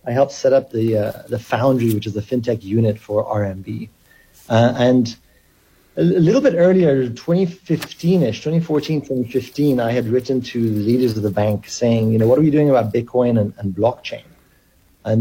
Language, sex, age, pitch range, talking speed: English, male, 30-49, 110-130 Hz, 180 wpm